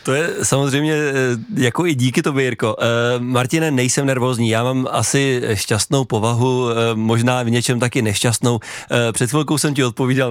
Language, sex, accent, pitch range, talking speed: Czech, male, native, 115-130 Hz, 150 wpm